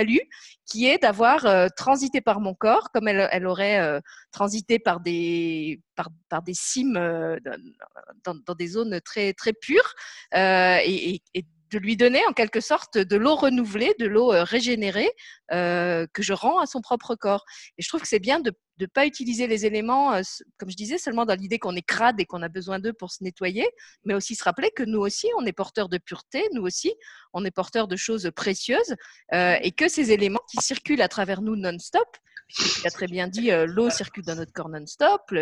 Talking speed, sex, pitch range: 200 wpm, female, 180-240 Hz